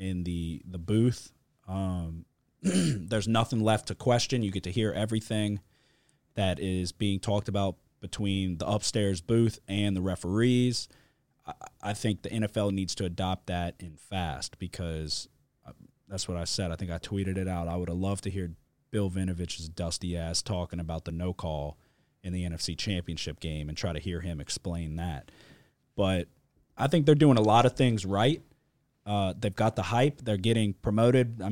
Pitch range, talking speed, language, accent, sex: 95-125 Hz, 185 wpm, English, American, male